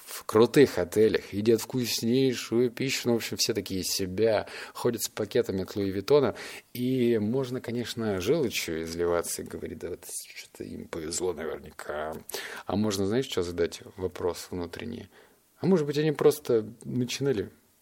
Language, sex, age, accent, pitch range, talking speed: Russian, male, 30-49, native, 100-125 Hz, 150 wpm